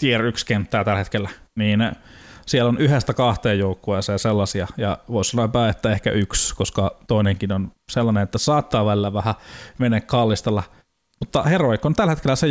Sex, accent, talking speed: male, native, 165 wpm